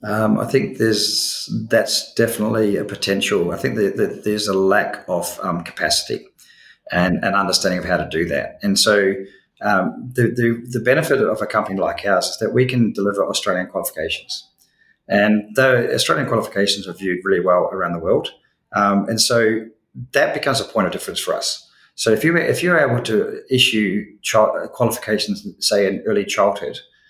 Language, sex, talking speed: English, male, 180 wpm